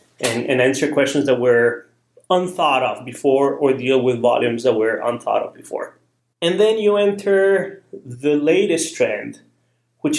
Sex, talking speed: male, 145 wpm